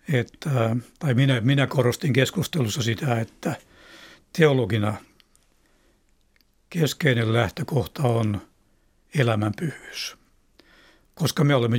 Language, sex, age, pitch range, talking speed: Finnish, male, 60-79, 120-150 Hz, 80 wpm